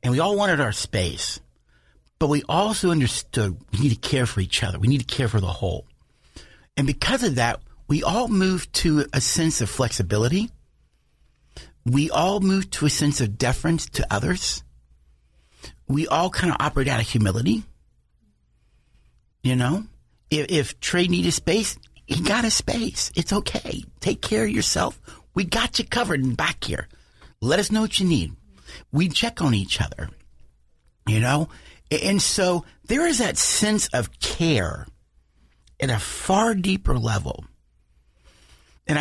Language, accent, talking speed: English, American, 160 wpm